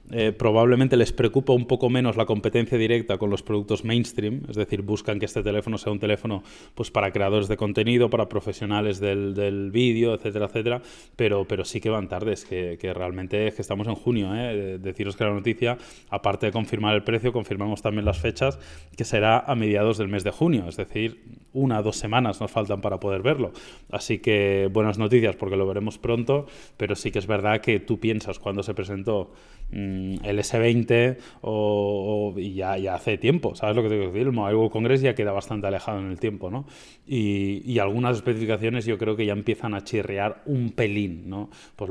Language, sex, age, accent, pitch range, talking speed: Spanish, male, 20-39, Spanish, 100-115 Hz, 205 wpm